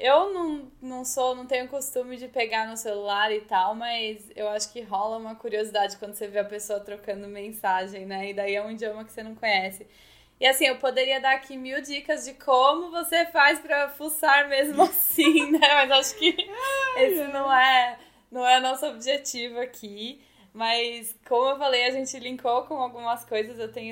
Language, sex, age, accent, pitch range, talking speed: Portuguese, female, 10-29, Brazilian, 220-285 Hz, 195 wpm